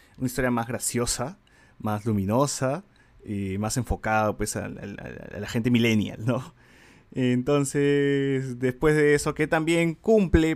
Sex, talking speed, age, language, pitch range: male, 130 wpm, 30-49, Spanish, 110-145 Hz